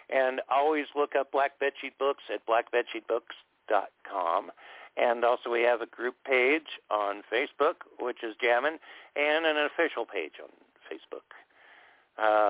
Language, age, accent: English, 60-79, American